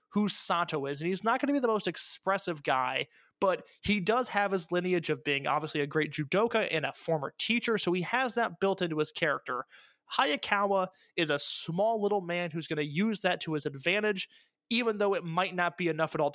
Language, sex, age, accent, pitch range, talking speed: English, male, 20-39, American, 160-205 Hz, 220 wpm